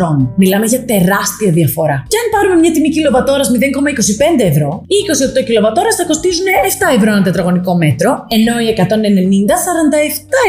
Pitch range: 195-295 Hz